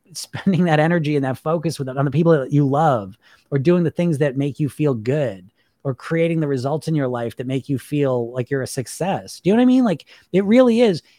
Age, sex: 30-49, male